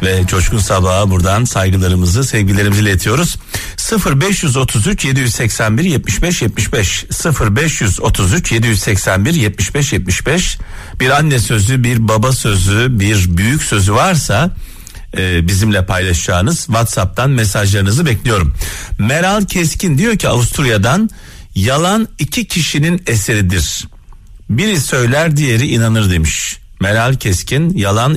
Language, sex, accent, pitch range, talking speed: Turkish, male, native, 95-130 Hz, 95 wpm